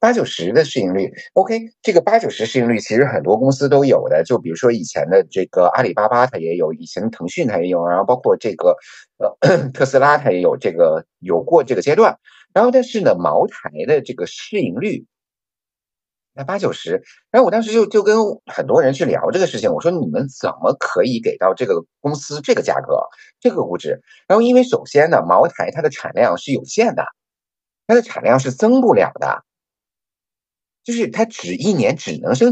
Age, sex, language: 50-69, male, Chinese